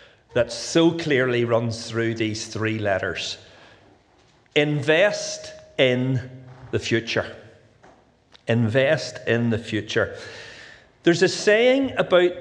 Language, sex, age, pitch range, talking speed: English, male, 40-59, 120-200 Hz, 95 wpm